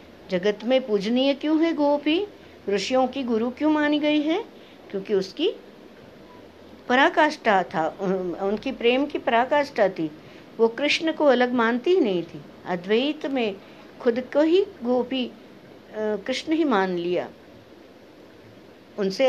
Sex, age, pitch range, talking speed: female, 60-79, 200-290 Hz, 130 wpm